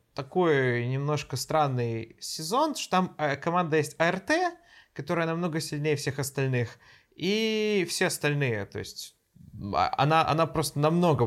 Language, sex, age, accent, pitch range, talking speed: Russian, male, 20-39, native, 125-170 Hz, 120 wpm